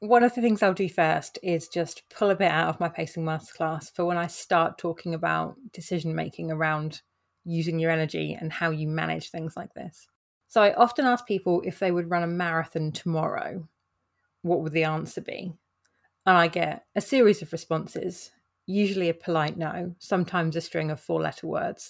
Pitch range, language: 165-190 Hz, English